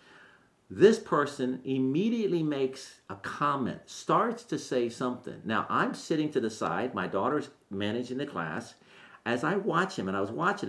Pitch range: 100-145 Hz